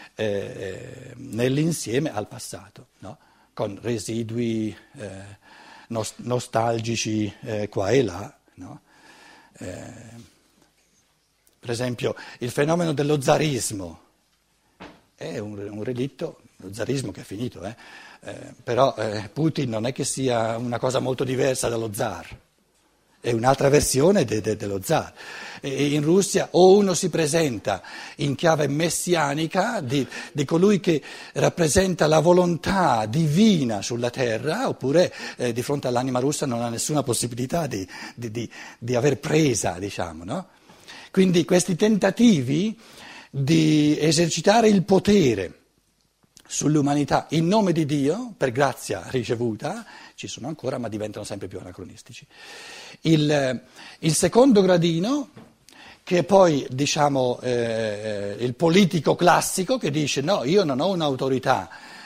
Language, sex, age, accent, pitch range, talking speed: Italian, male, 60-79, native, 115-165 Hz, 125 wpm